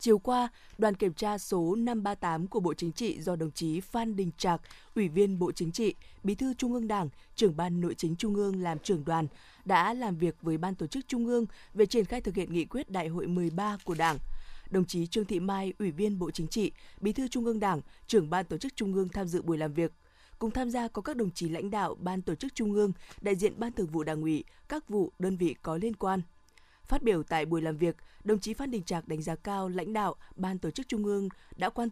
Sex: female